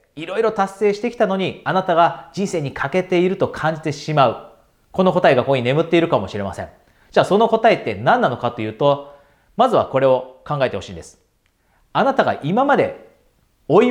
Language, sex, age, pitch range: Japanese, male, 40-59, 115-190 Hz